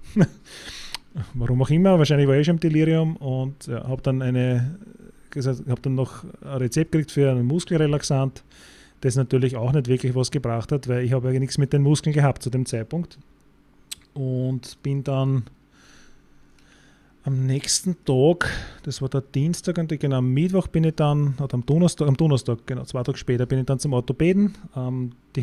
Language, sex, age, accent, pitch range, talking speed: German, male, 30-49, Austrian, 125-145 Hz, 185 wpm